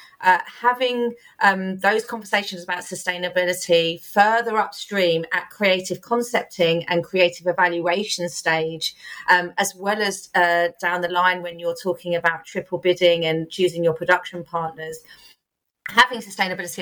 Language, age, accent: English, 30-49, British